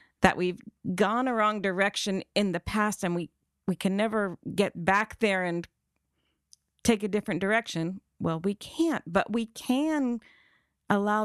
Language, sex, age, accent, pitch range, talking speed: English, female, 40-59, American, 175-220 Hz, 155 wpm